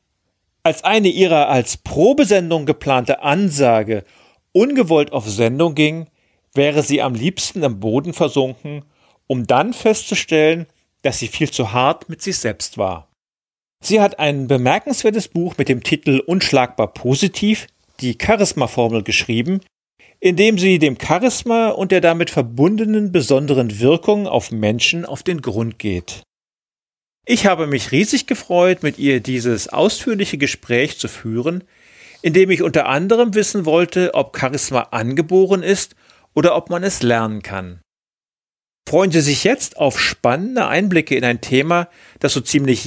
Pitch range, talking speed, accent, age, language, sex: 125-180 Hz, 145 wpm, German, 40-59, German, male